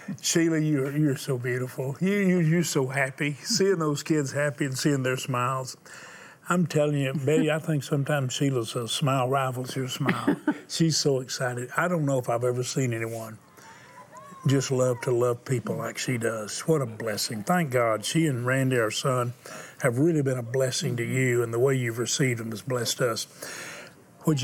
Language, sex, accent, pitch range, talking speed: English, male, American, 120-150 Hz, 190 wpm